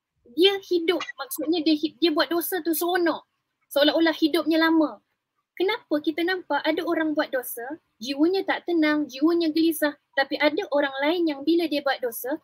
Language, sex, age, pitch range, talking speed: English, female, 20-39, 270-330 Hz, 160 wpm